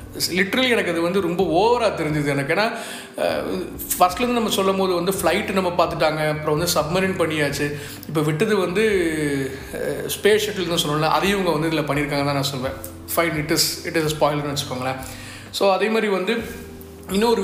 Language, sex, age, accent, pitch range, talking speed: Tamil, male, 30-49, native, 150-195 Hz, 160 wpm